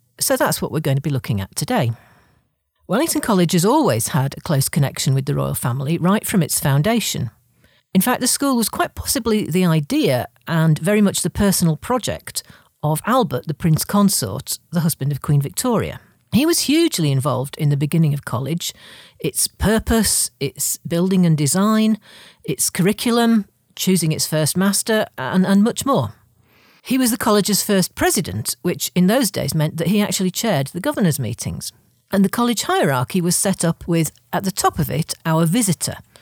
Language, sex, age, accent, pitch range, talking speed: English, female, 50-69, British, 140-195 Hz, 180 wpm